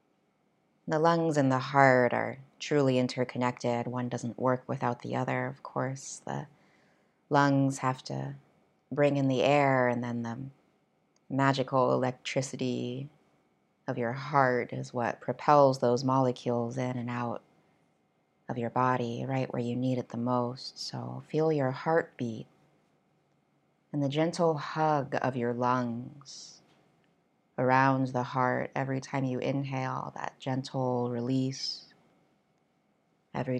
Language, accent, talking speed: English, American, 130 wpm